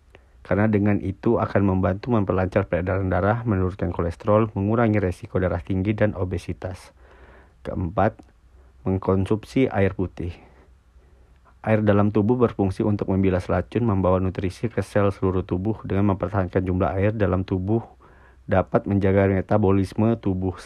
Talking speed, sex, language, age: 125 wpm, male, Indonesian, 40-59